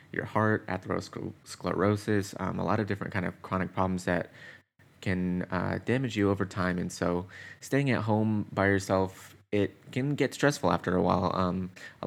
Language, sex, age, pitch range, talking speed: English, male, 20-39, 90-105 Hz, 175 wpm